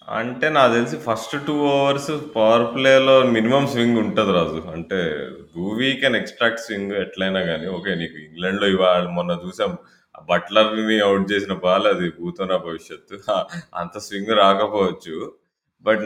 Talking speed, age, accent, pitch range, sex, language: 135 wpm, 20-39, native, 90-120 Hz, male, Telugu